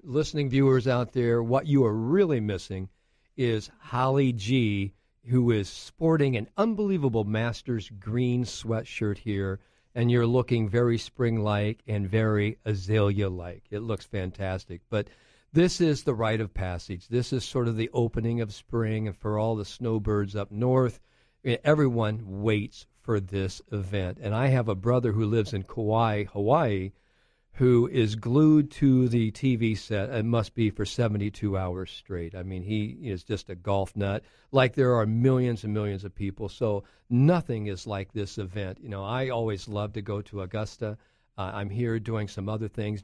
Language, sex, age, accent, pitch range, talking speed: English, male, 50-69, American, 100-120 Hz, 170 wpm